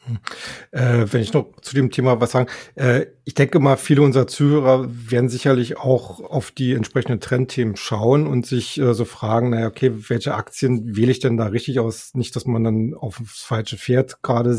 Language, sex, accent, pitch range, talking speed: German, male, German, 115-130 Hz, 195 wpm